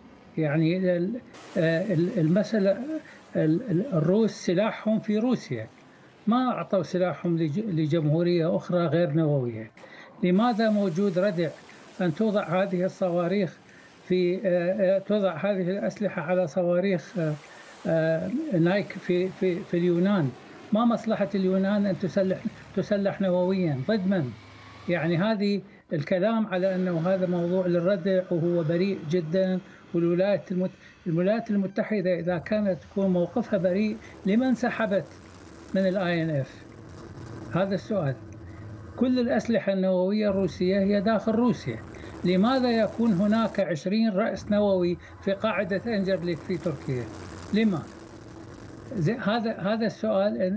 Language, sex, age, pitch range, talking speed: Arabic, male, 60-79, 170-205 Hz, 100 wpm